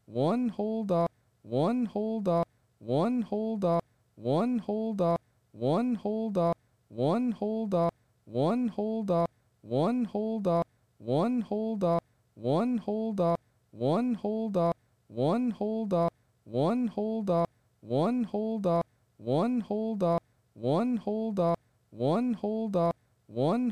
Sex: male